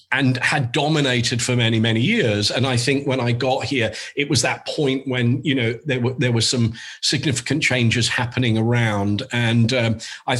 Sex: male